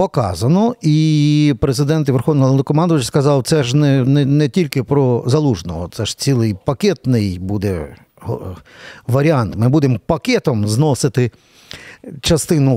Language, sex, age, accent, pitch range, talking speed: Ukrainian, male, 50-69, native, 125-160 Hz, 115 wpm